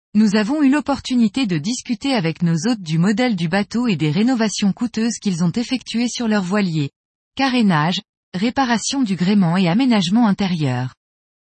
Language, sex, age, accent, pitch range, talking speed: French, female, 20-39, French, 190-245 Hz, 160 wpm